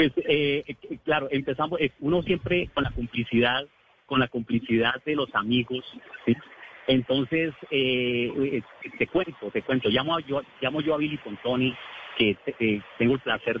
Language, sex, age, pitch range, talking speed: Spanish, male, 40-59, 110-140 Hz, 165 wpm